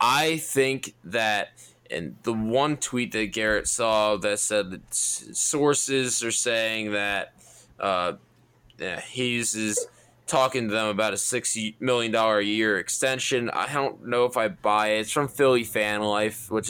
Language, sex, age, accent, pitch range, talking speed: English, male, 20-39, American, 105-125 Hz, 160 wpm